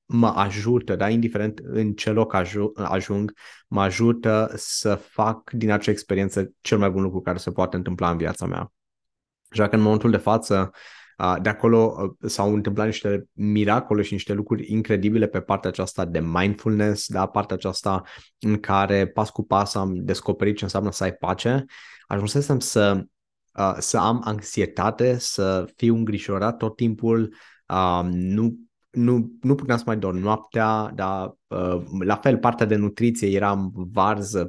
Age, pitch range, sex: 20-39, 95-110 Hz, male